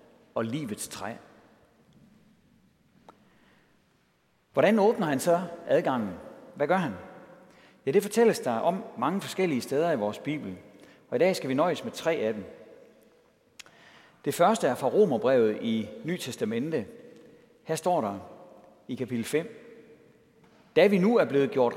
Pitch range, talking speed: 115-180 Hz, 140 wpm